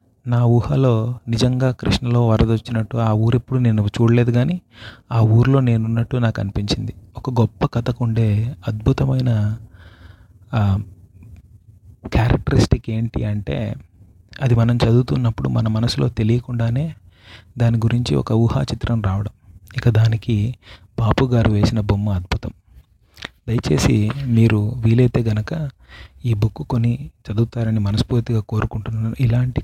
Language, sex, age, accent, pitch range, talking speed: English, male, 30-49, Indian, 105-125 Hz, 85 wpm